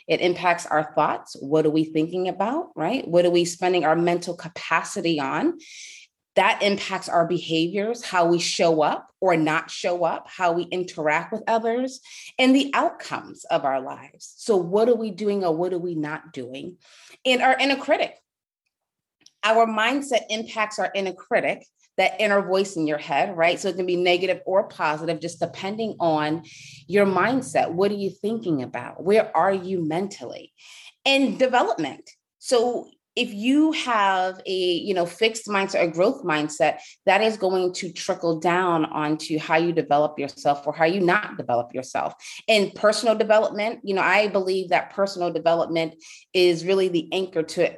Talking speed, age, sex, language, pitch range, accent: 170 wpm, 30-49, female, English, 165-210 Hz, American